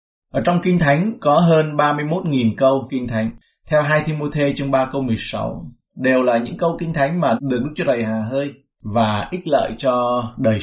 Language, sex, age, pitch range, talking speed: Vietnamese, male, 20-39, 110-140 Hz, 205 wpm